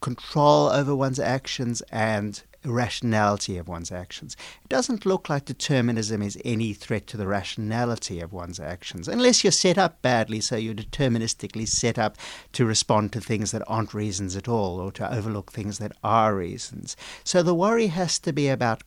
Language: English